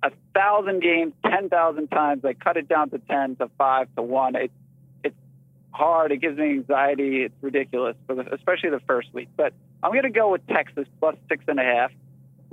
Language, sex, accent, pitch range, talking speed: English, male, American, 135-170 Hz, 175 wpm